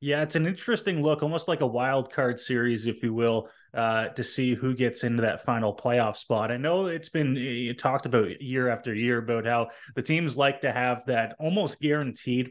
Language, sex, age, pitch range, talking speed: English, male, 20-39, 120-150 Hz, 205 wpm